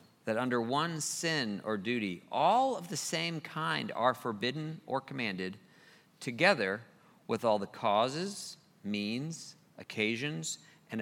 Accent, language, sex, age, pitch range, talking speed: American, English, male, 40-59, 105-150 Hz, 125 wpm